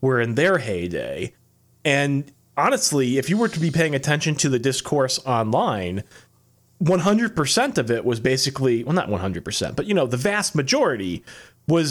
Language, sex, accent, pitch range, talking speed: English, male, American, 130-180 Hz, 160 wpm